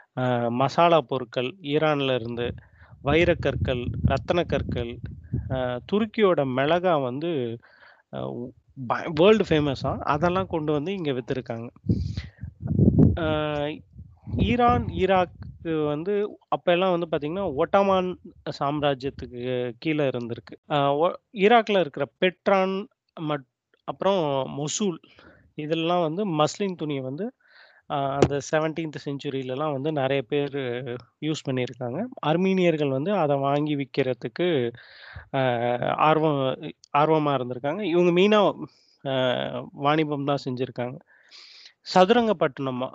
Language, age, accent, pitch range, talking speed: Tamil, 30-49, native, 130-175 Hz, 80 wpm